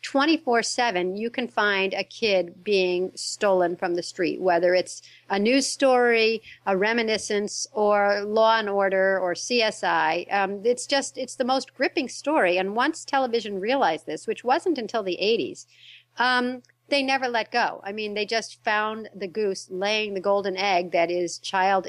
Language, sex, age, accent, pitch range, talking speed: English, female, 50-69, American, 190-240 Hz, 165 wpm